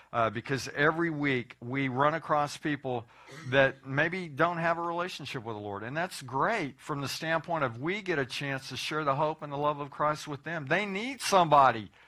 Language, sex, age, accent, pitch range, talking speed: English, male, 50-69, American, 135-170 Hz, 210 wpm